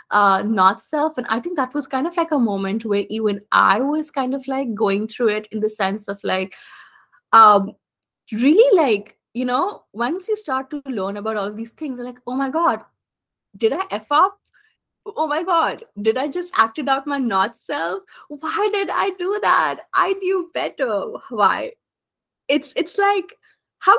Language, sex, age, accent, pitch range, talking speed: English, female, 20-39, Indian, 195-290 Hz, 185 wpm